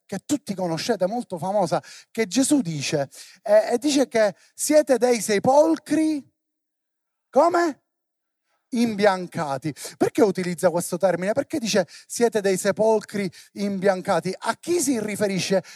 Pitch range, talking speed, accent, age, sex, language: 175-270 Hz, 115 wpm, native, 30-49, male, Italian